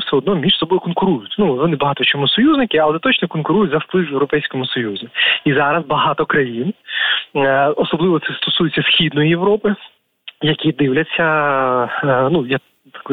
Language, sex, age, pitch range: Ukrainian, male, 20-39, 135-170 Hz